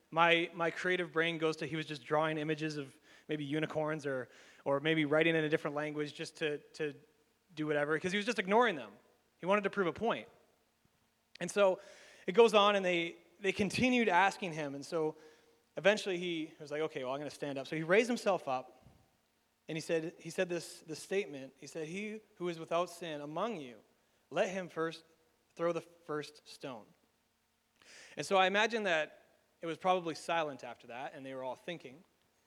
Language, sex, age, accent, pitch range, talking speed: English, male, 30-49, American, 140-180 Hz, 200 wpm